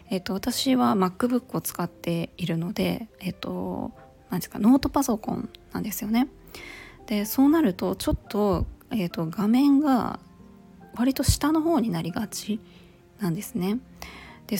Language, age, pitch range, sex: Japanese, 20-39, 190-245 Hz, female